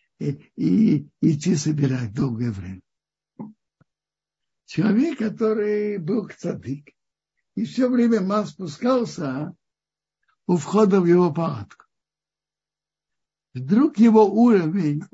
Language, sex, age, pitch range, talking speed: Russian, male, 60-79, 165-220 Hz, 95 wpm